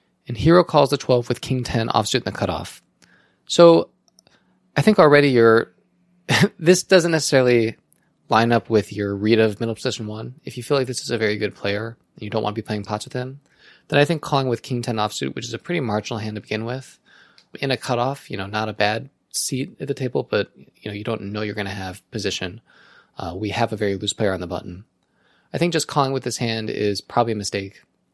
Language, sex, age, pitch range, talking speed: English, male, 20-39, 110-135 Hz, 230 wpm